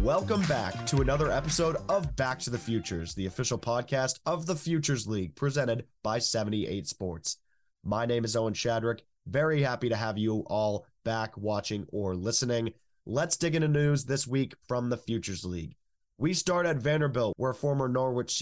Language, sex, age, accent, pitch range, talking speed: English, male, 20-39, American, 105-135 Hz, 175 wpm